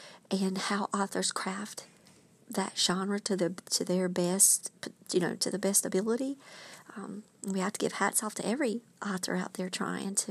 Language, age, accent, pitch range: English, 40-59, American, 185-225 Hz